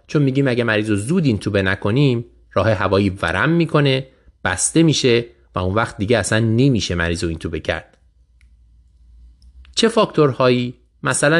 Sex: male